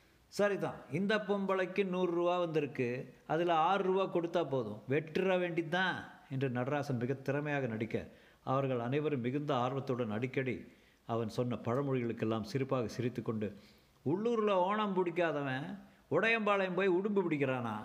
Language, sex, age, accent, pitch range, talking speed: Tamil, male, 50-69, native, 120-175 Hz, 110 wpm